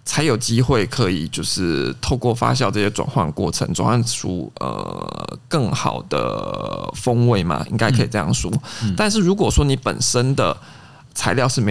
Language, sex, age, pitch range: Chinese, male, 20-39, 110-135 Hz